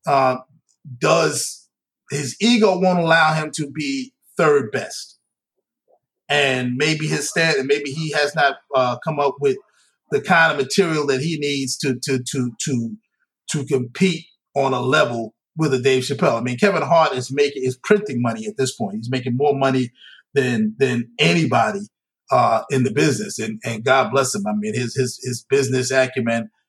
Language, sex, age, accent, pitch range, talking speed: English, male, 30-49, American, 125-150 Hz, 180 wpm